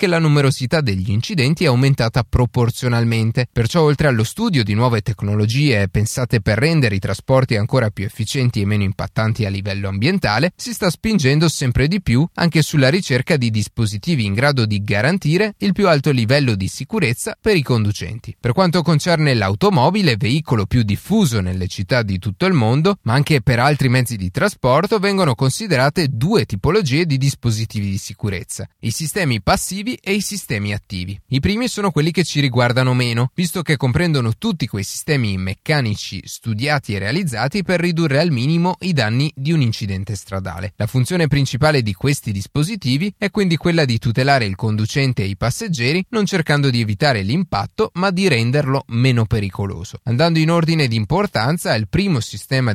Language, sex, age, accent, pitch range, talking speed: Italian, male, 30-49, native, 110-160 Hz, 170 wpm